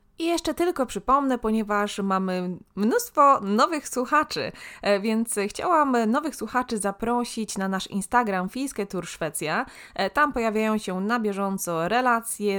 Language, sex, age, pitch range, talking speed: Polish, female, 20-39, 190-250 Hz, 120 wpm